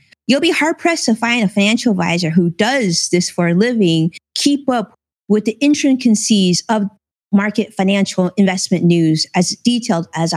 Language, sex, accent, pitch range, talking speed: English, female, American, 190-275 Hz, 160 wpm